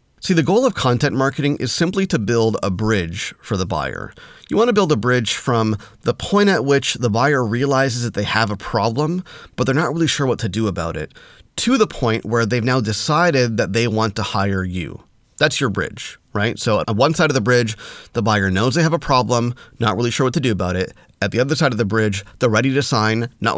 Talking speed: 240 wpm